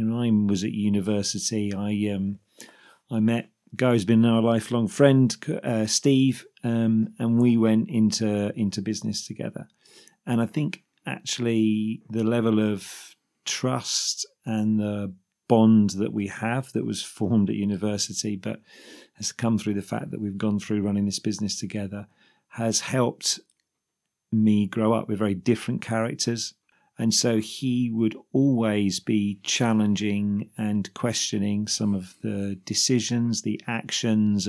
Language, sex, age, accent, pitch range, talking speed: English, male, 40-59, British, 105-115 Hz, 145 wpm